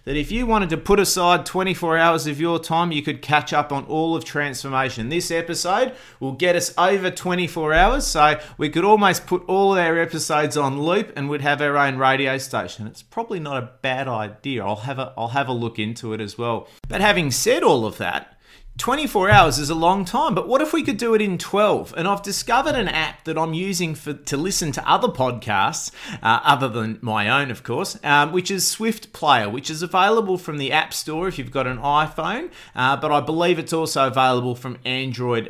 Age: 30-49